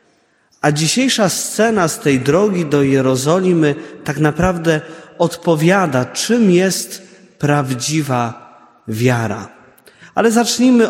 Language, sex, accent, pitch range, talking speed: Polish, male, native, 130-170 Hz, 95 wpm